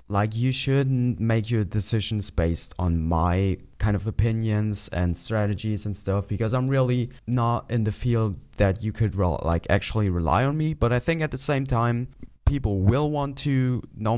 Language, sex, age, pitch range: English, male, 20-39, 90-110 Hz